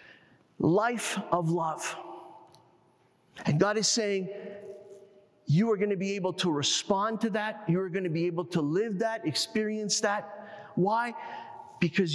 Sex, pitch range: male, 160-215 Hz